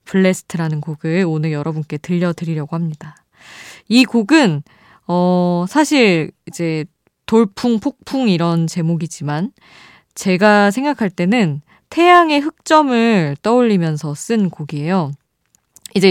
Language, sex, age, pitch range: Korean, female, 20-39, 165-230 Hz